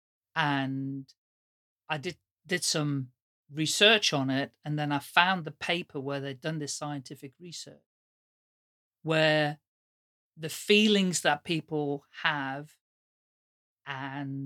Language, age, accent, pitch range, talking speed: English, 40-59, British, 135-165 Hz, 110 wpm